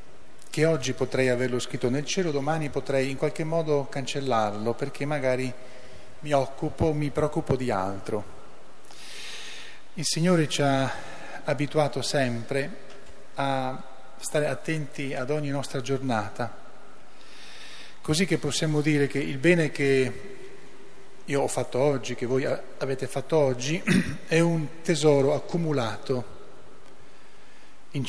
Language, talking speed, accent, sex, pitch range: Italian, 120 wpm, native, male, 120-145 Hz